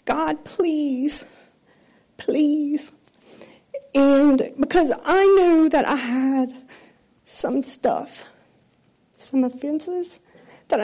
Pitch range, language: 210-265 Hz, English